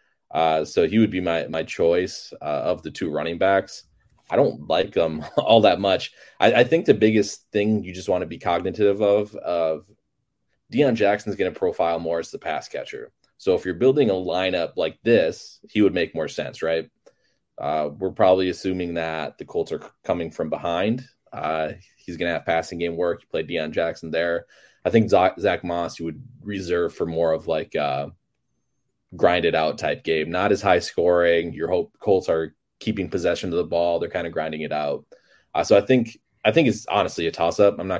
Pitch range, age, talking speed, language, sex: 80-100 Hz, 20-39, 210 wpm, English, male